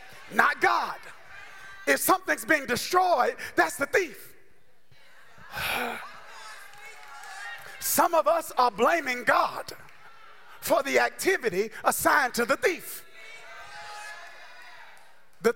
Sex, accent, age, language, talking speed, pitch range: male, American, 40-59, English, 90 wpm, 235-390 Hz